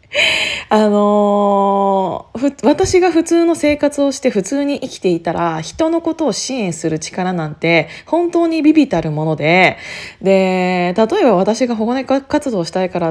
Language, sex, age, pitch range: Japanese, female, 20-39, 175-275 Hz